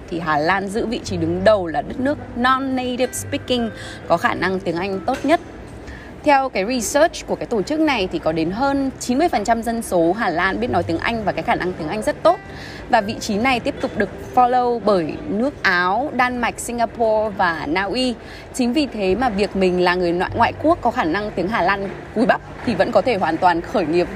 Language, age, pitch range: Vietnamese, 20-39, 175-250 Hz